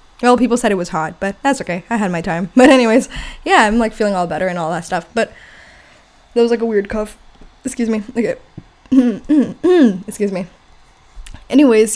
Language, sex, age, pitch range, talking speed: English, female, 10-29, 200-260 Hz, 190 wpm